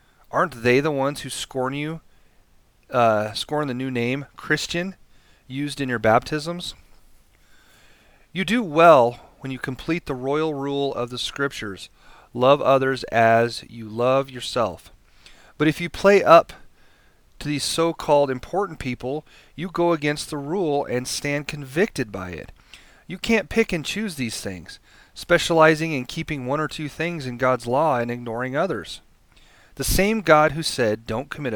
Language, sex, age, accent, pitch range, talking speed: English, male, 30-49, American, 115-155 Hz, 155 wpm